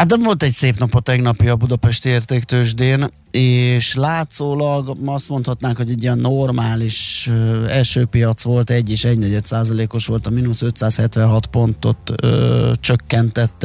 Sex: male